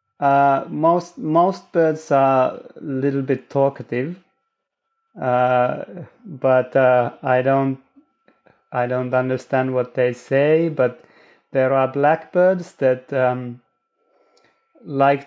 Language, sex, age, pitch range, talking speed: Finnish, male, 30-49, 125-170 Hz, 105 wpm